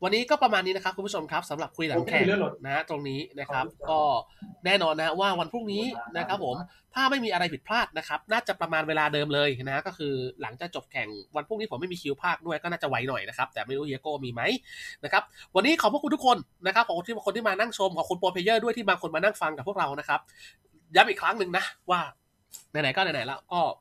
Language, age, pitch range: Thai, 20-39, 140-195 Hz